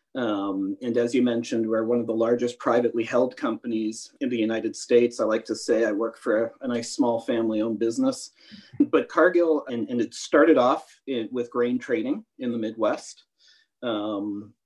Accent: American